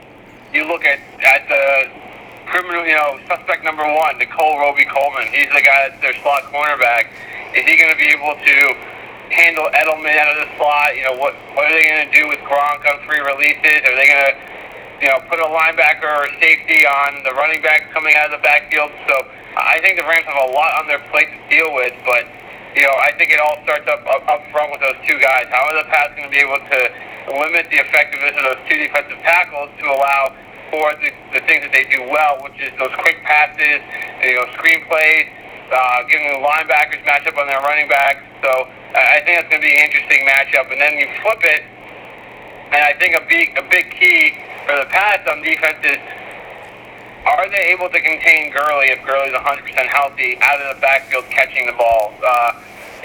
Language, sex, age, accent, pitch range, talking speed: English, male, 40-59, American, 140-155 Hz, 215 wpm